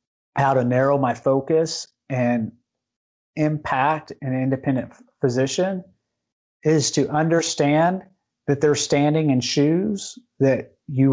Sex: male